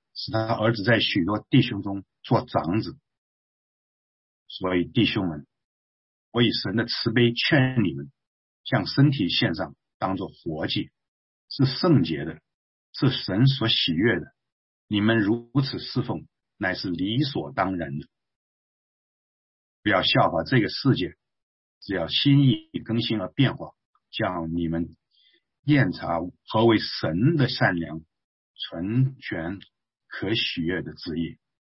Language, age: English, 50-69